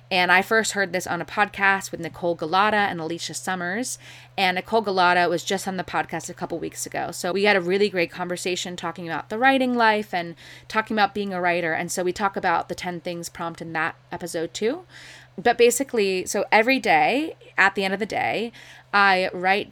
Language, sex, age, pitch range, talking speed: English, female, 20-39, 170-205 Hz, 215 wpm